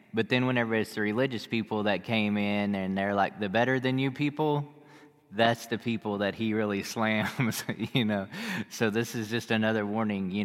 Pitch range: 100-120 Hz